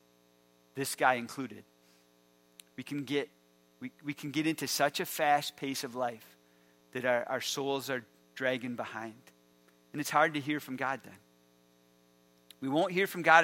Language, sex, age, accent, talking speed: English, male, 40-59, American, 165 wpm